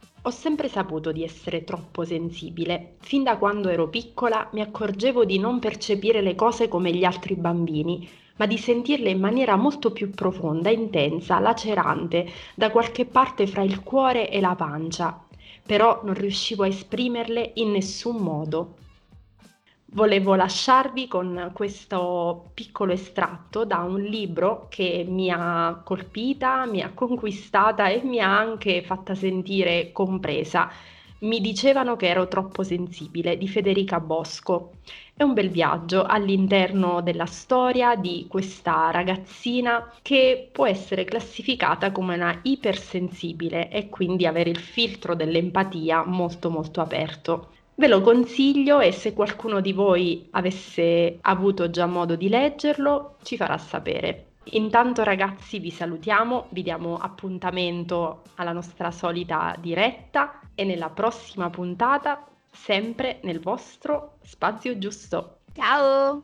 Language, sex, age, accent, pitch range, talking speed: Italian, female, 30-49, native, 175-230 Hz, 130 wpm